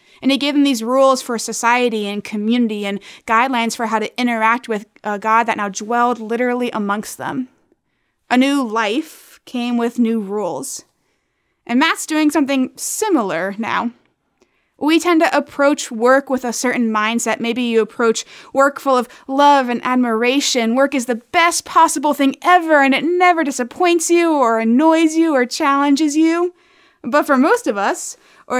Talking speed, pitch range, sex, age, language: 170 wpm, 225-285 Hz, female, 20-39, English